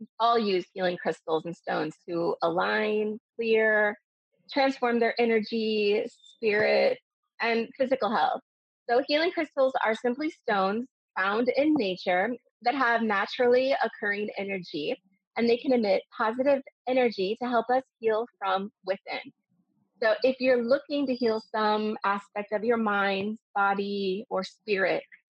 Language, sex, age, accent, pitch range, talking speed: English, female, 30-49, American, 200-250 Hz, 135 wpm